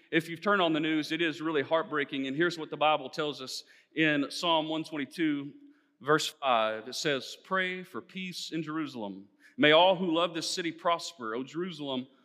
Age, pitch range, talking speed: 40-59, 115-165 Hz, 185 wpm